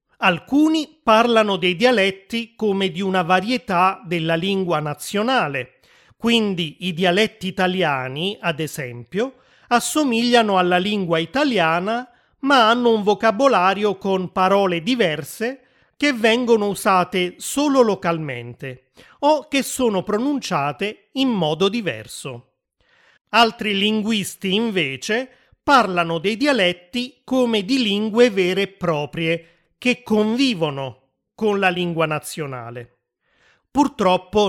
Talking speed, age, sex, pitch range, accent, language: 105 wpm, 30-49, male, 165-225 Hz, native, Italian